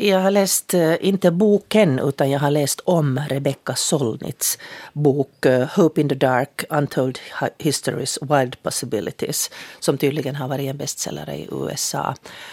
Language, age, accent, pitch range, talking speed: Finnish, 40-59, native, 135-160 Hz, 140 wpm